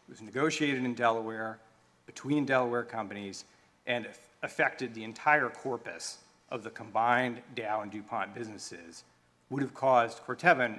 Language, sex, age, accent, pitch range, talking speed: English, male, 40-59, American, 110-135 Hz, 135 wpm